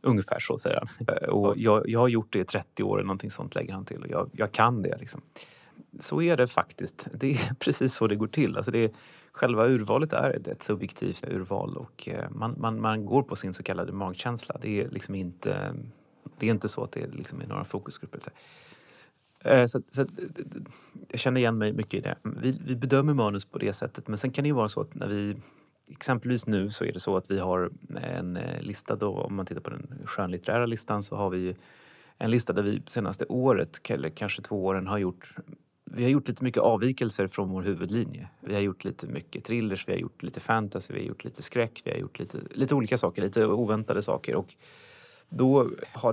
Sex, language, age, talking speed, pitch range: male, Swedish, 30-49, 215 wpm, 100-125 Hz